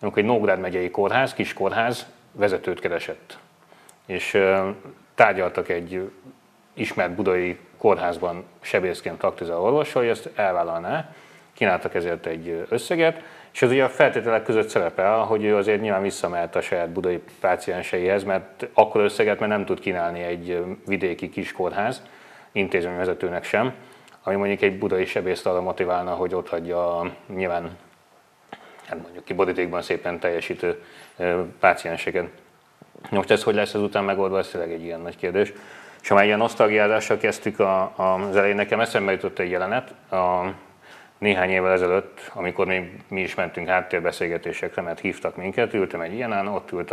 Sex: male